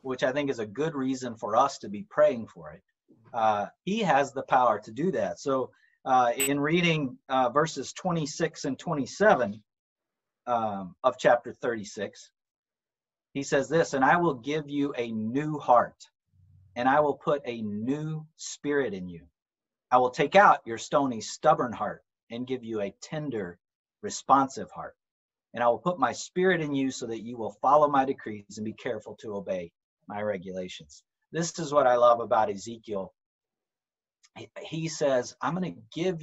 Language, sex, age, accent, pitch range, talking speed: English, male, 40-59, American, 115-150 Hz, 175 wpm